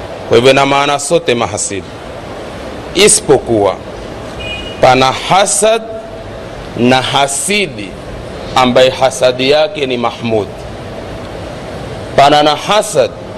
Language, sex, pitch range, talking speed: Swahili, male, 115-150 Hz, 85 wpm